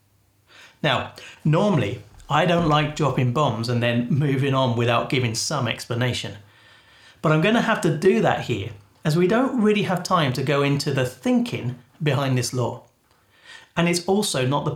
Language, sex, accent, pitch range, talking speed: English, male, British, 120-170 Hz, 175 wpm